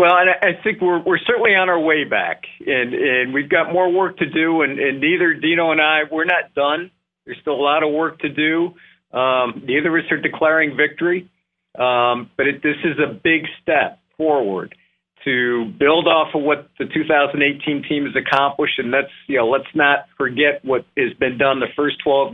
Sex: male